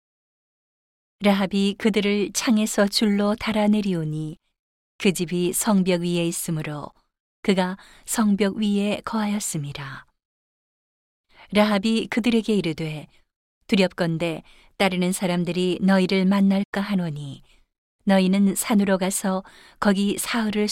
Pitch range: 170-205 Hz